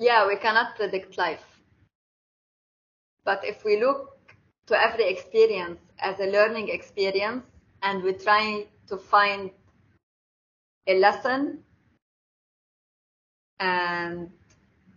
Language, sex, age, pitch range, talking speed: English, female, 20-39, 190-230 Hz, 95 wpm